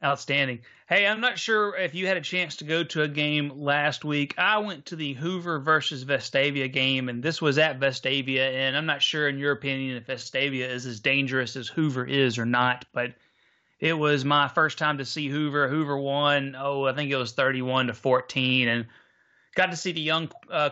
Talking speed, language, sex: 210 wpm, English, male